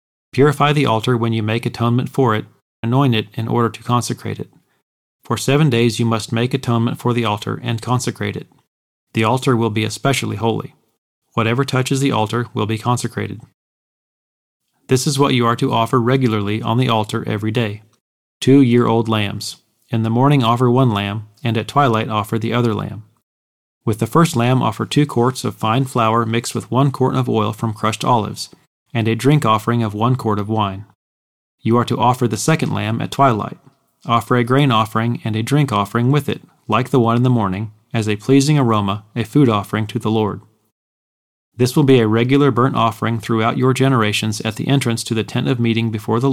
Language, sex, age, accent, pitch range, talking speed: English, male, 30-49, American, 110-130 Hz, 200 wpm